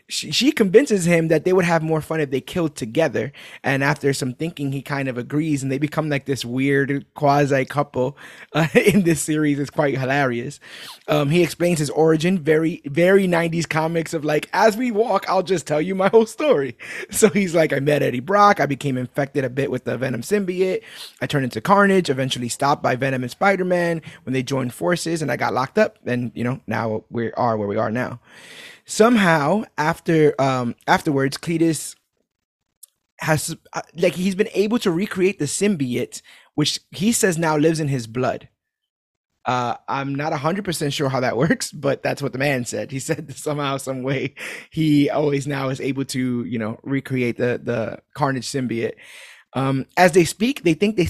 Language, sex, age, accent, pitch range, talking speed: English, male, 20-39, American, 135-180 Hz, 195 wpm